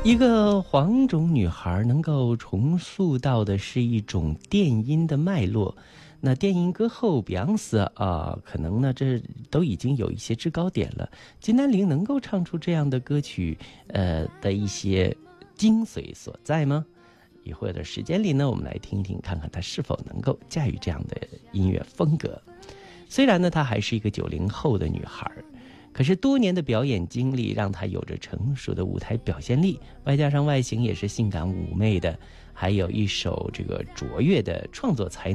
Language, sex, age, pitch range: Chinese, male, 50-69, 95-160 Hz